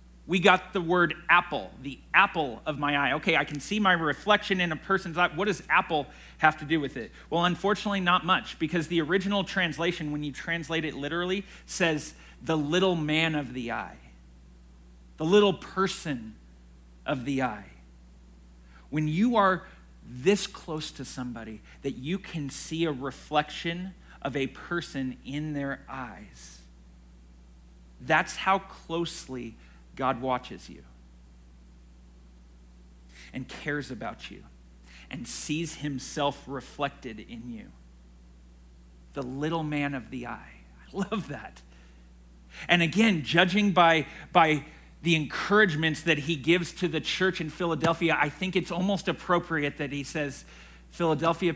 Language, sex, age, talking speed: English, male, 40-59, 140 wpm